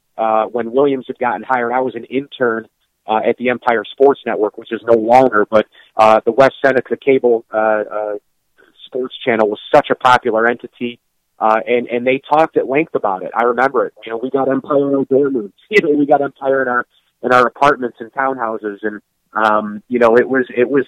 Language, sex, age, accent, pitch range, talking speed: English, male, 30-49, American, 115-135 Hz, 220 wpm